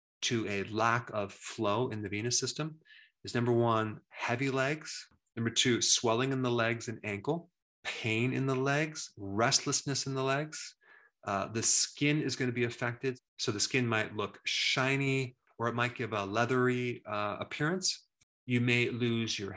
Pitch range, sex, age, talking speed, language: 105-130 Hz, male, 30-49, 170 wpm, English